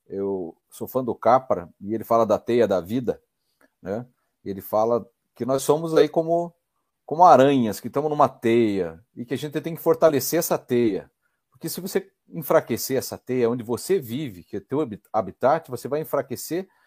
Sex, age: male, 40-59